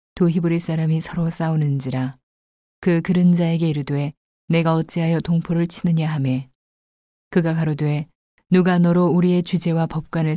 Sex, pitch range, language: female, 145-175 Hz, Korean